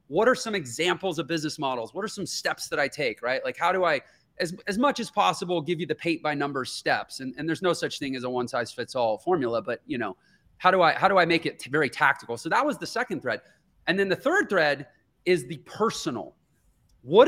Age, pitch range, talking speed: 30-49, 150-195 Hz, 250 wpm